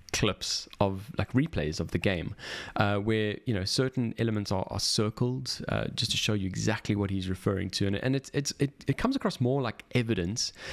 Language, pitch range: English, 95-130 Hz